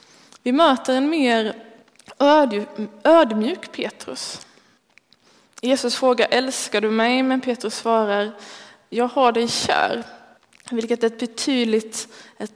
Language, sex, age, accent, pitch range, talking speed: Swedish, female, 20-39, native, 210-245 Hz, 105 wpm